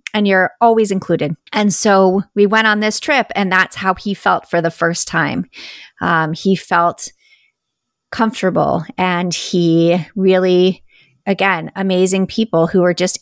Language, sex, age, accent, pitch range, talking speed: English, female, 30-49, American, 170-200 Hz, 150 wpm